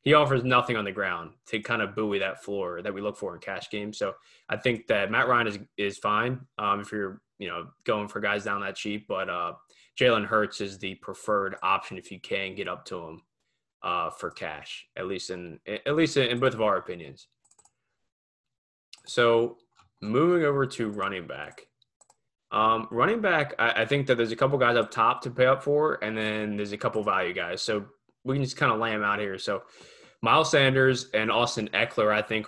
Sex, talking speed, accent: male, 210 wpm, American